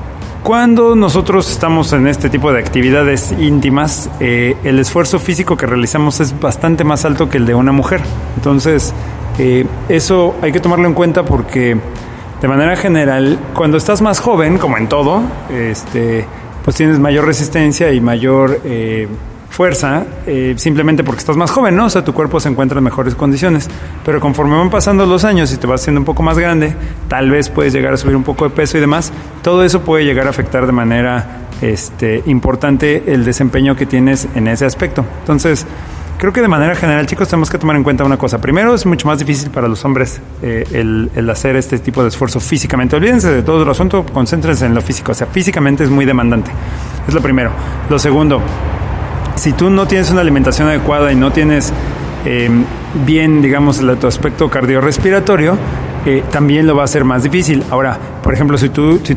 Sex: male